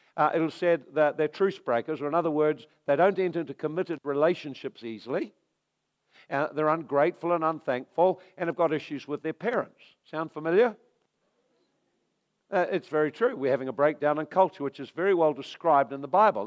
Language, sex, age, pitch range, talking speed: English, male, 60-79, 140-180 Hz, 185 wpm